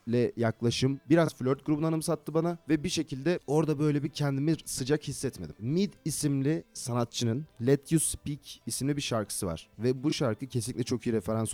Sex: male